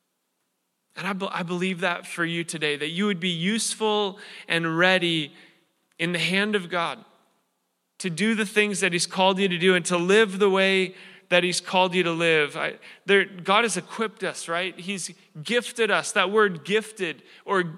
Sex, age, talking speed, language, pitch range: male, 20-39, 180 wpm, English, 190-235 Hz